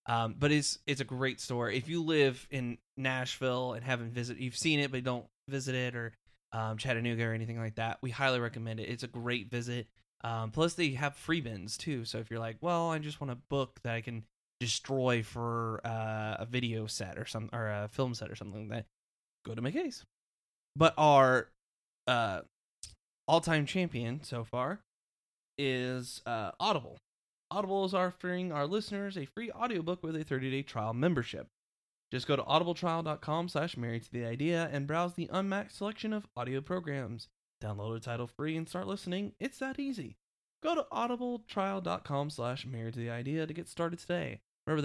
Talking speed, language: 180 wpm, English